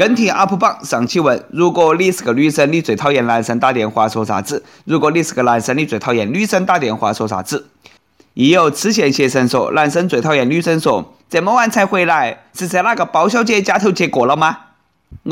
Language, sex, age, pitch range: Chinese, male, 20-39, 135-185 Hz